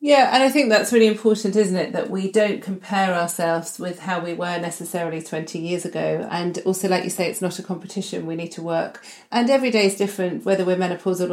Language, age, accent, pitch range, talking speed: English, 40-59, British, 170-195 Hz, 230 wpm